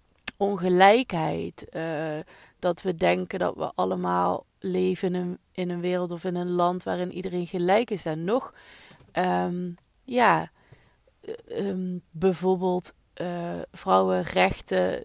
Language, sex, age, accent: Dutch, female, 20-39, Dutch